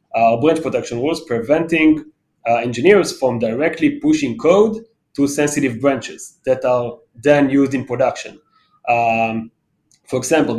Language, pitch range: English, 125-160 Hz